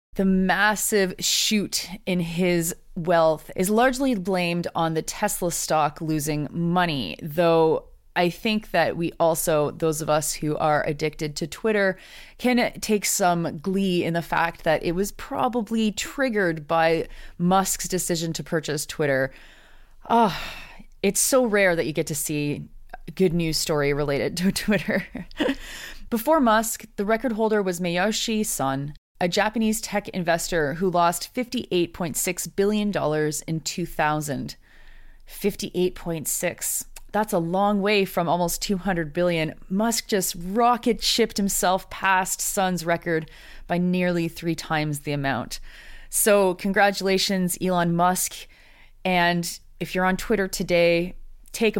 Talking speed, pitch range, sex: 130 wpm, 165-200 Hz, female